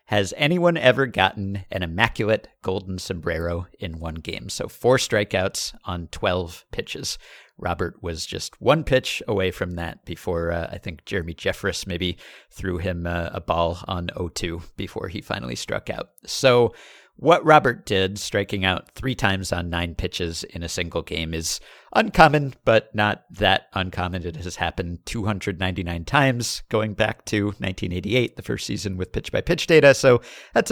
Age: 50-69